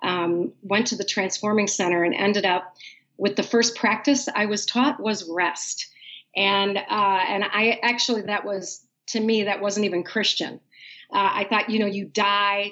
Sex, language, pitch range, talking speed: female, English, 190-225 Hz, 180 wpm